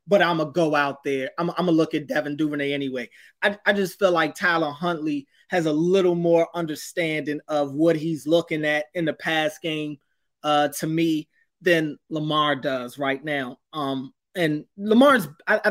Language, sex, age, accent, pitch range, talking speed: English, male, 20-39, American, 150-180 Hz, 185 wpm